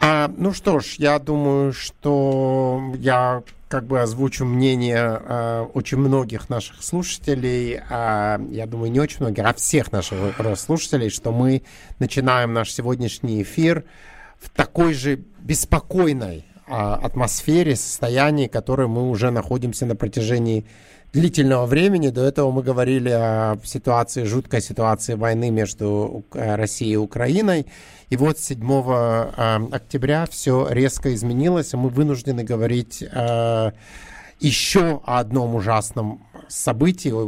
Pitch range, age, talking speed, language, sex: 110-140 Hz, 50-69, 125 wpm, English, male